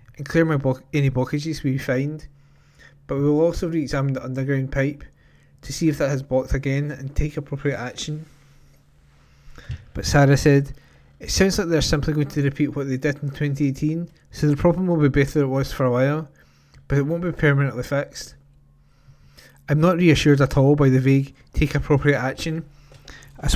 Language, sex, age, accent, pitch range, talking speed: English, male, 20-39, British, 130-150 Hz, 180 wpm